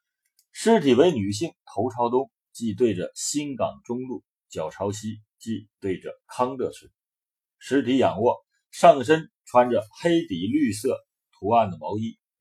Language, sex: Chinese, male